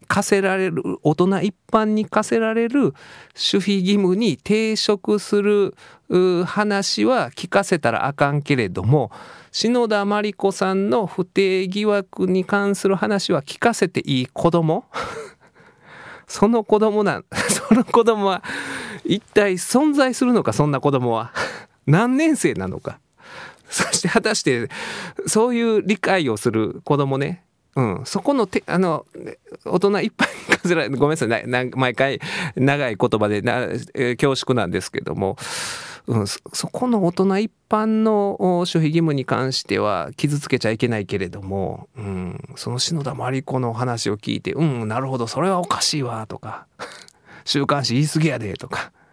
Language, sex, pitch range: Japanese, male, 135-210 Hz